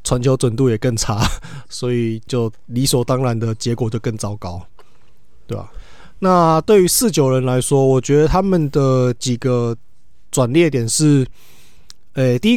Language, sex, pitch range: Chinese, male, 125-180 Hz